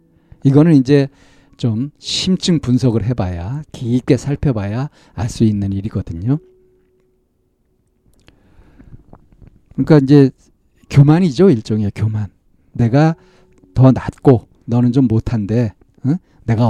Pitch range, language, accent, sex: 110-140 Hz, Korean, native, male